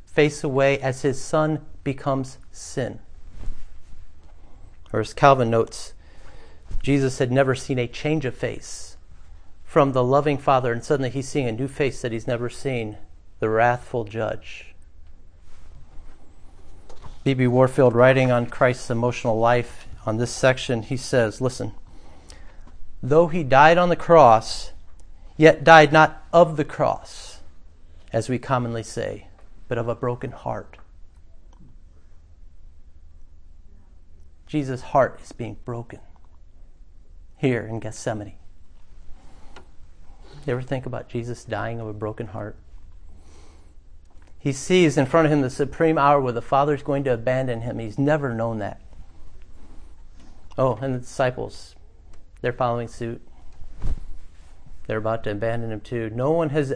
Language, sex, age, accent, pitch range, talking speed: English, male, 40-59, American, 80-130 Hz, 130 wpm